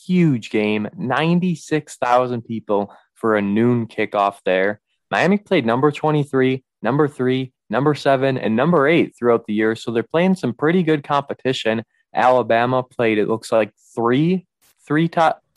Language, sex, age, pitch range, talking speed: English, male, 20-39, 110-135 Hz, 145 wpm